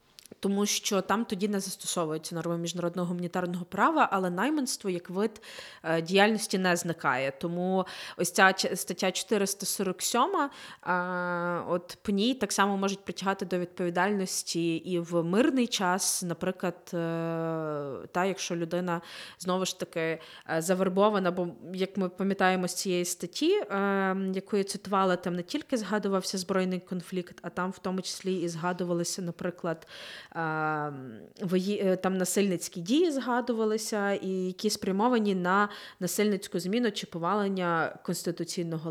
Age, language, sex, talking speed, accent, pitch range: 20-39, Ukrainian, female, 120 wpm, native, 175-195 Hz